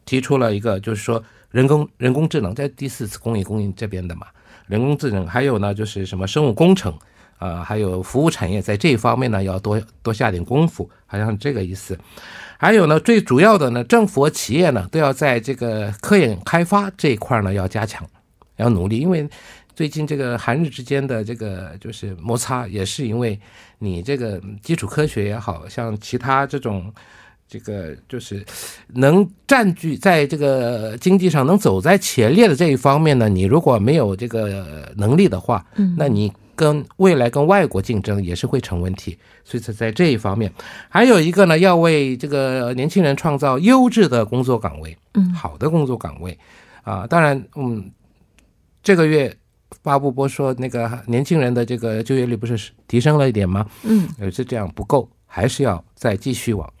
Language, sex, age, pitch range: Korean, male, 50-69, 105-150 Hz